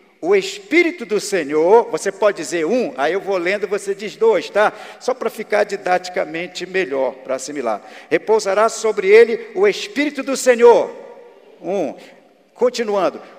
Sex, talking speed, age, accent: male, 145 wpm, 50-69, Brazilian